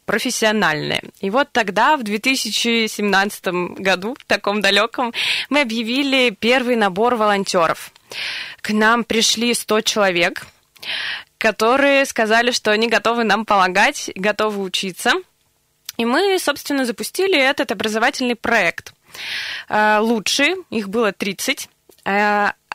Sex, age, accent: female, 20-39, native